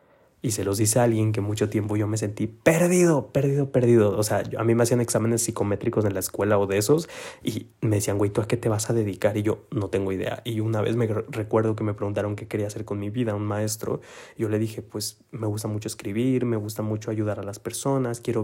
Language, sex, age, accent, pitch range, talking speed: Spanish, male, 20-39, Mexican, 105-115 Hz, 250 wpm